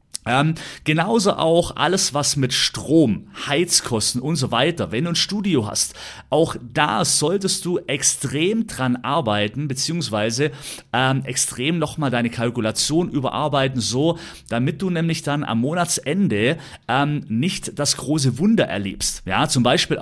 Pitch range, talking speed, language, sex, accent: 120-165 Hz, 140 wpm, German, male, German